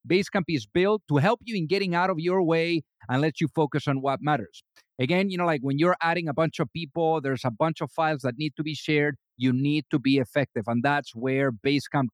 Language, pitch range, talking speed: English, 145-190 Hz, 240 wpm